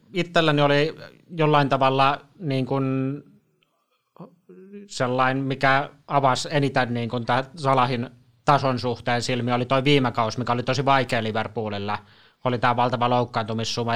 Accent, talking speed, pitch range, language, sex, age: native, 120 wpm, 120-135 Hz, Finnish, male, 20-39